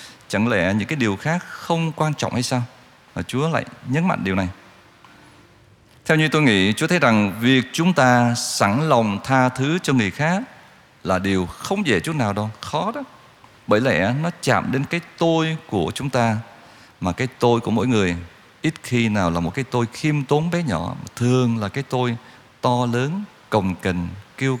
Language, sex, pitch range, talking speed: Vietnamese, male, 115-155 Hz, 195 wpm